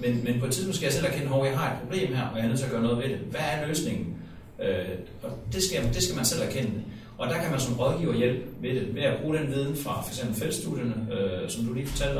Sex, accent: male, native